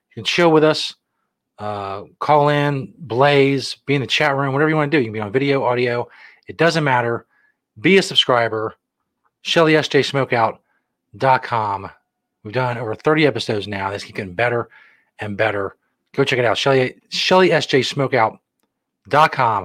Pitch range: 110-140 Hz